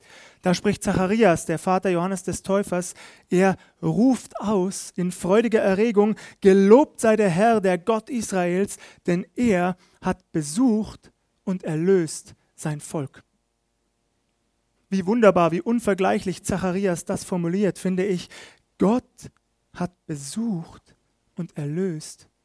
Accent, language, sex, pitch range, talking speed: German, German, male, 160-210 Hz, 115 wpm